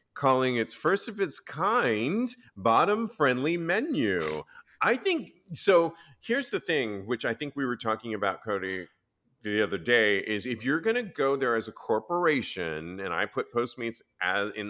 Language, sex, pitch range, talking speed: English, male, 105-145 Hz, 165 wpm